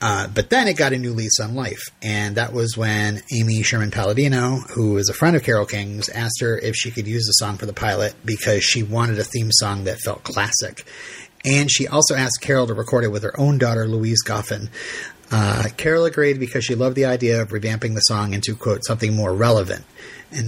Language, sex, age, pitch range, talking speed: English, male, 30-49, 110-130 Hz, 225 wpm